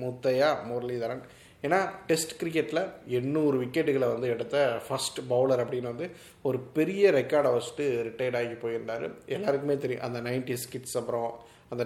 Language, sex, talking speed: Tamil, male, 130 wpm